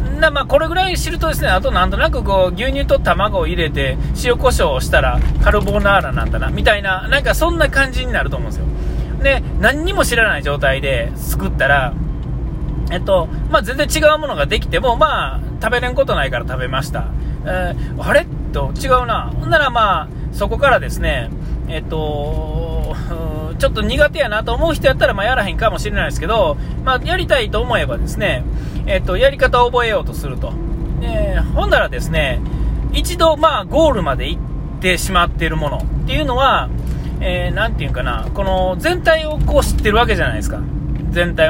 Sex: male